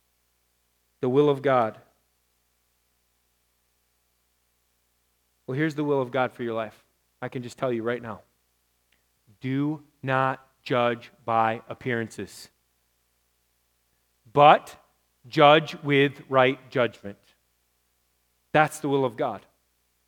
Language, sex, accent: English, male, American